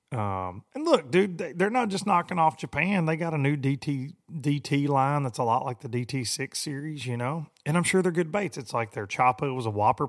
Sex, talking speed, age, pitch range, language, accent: male, 230 wpm, 30-49, 115-165 Hz, English, American